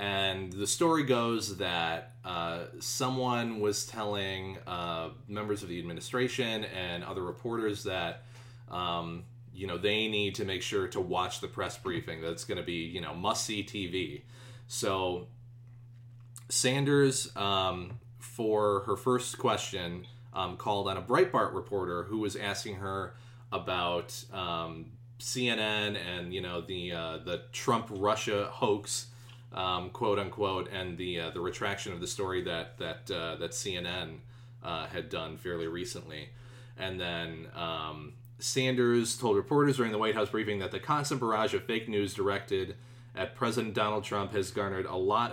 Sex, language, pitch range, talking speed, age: male, English, 95-120 Hz, 150 wpm, 30-49